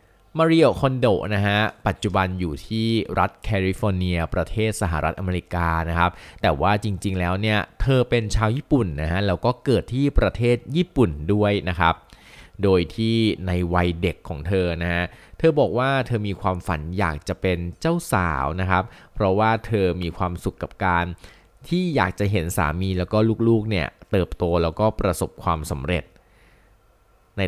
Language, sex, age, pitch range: Thai, male, 20-39, 90-115 Hz